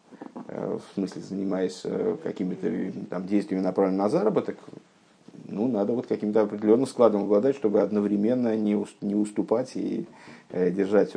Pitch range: 105-150 Hz